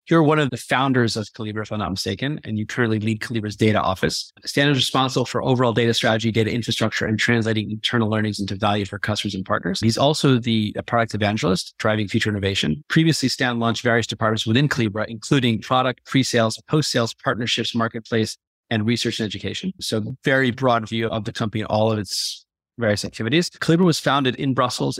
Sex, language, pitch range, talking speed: male, English, 110-125 Hz, 190 wpm